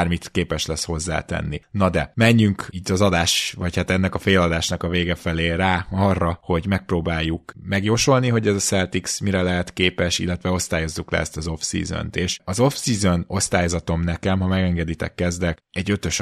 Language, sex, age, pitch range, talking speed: Hungarian, male, 20-39, 85-100 Hz, 165 wpm